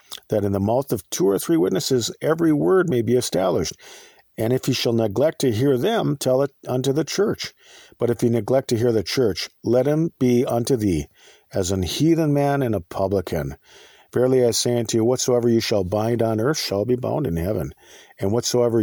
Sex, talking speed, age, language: male, 205 wpm, 50-69, English